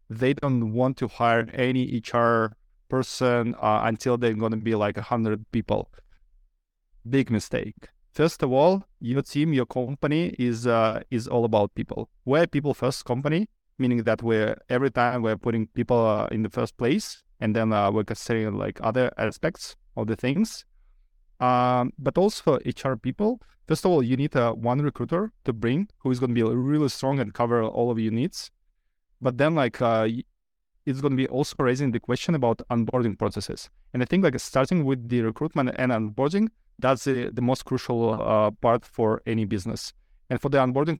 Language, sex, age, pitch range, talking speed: English, male, 20-39, 115-140 Hz, 185 wpm